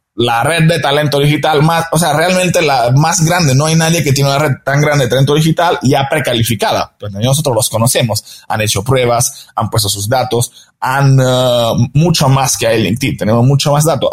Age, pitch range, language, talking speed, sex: 20-39, 120-155 Hz, Spanish, 205 wpm, male